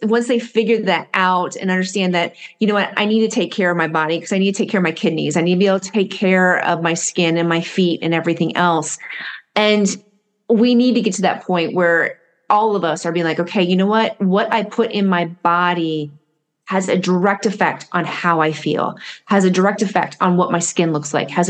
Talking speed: 250 wpm